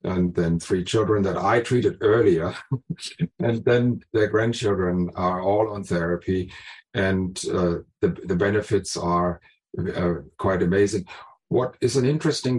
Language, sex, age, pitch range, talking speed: English, male, 50-69, 95-110 Hz, 140 wpm